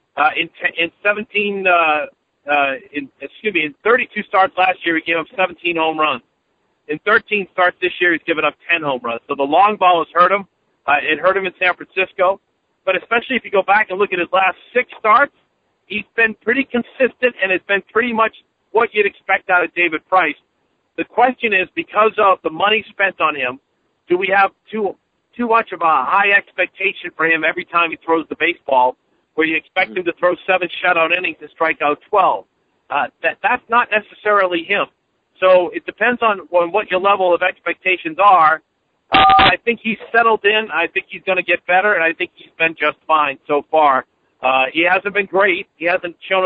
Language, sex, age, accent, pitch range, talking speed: English, male, 50-69, American, 165-200 Hz, 210 wpm